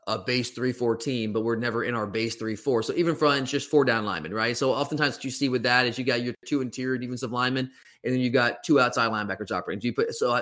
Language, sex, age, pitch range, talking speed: English, male, 20-39, 120-140 Hz, 270 wpm